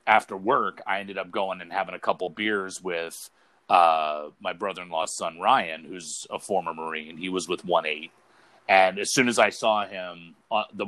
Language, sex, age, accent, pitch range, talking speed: English, male, 30-49, American, 90-105 Hz, 190 wpm